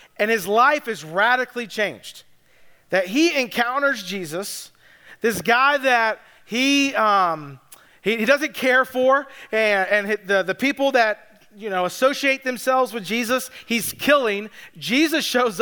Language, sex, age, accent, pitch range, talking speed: English, male, 40-59, American, 205-260 Hz, 140 wpm